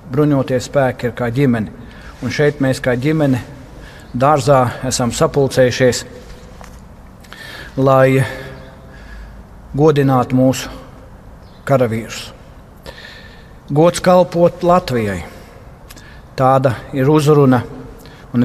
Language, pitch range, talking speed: English, 125-170 Hz, 70 wpm